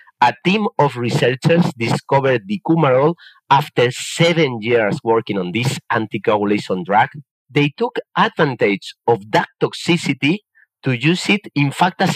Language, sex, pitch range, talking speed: English, male, 120-165 Hz, 130 wpm